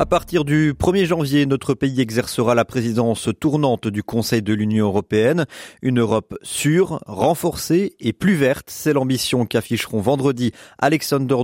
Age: 30-49